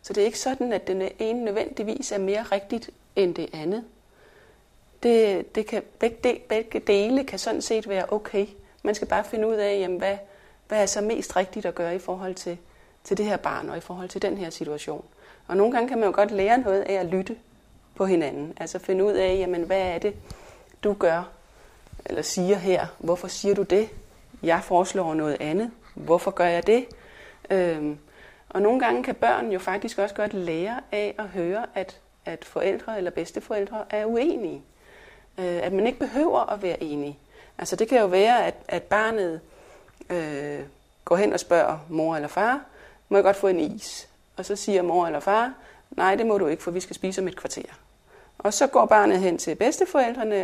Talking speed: 200 wpm